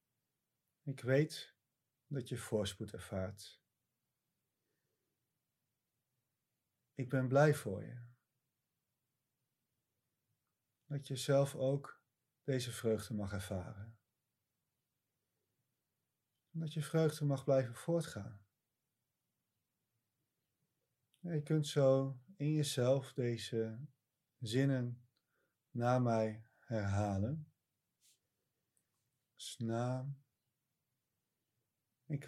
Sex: male